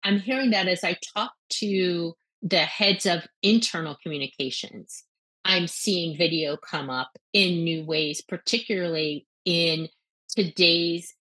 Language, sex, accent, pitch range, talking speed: English, female, American, 165-205 Hz, 125 wpm